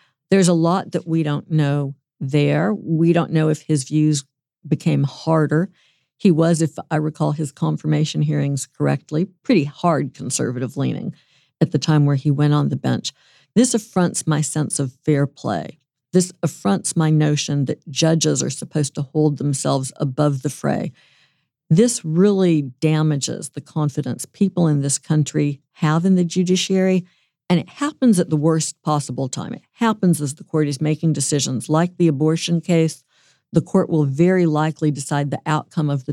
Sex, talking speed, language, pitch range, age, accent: female, 170 wpm, English, 145-170 Hz, 50-69, American